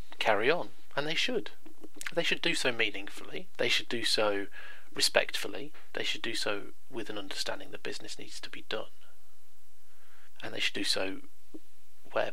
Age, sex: 30-49, male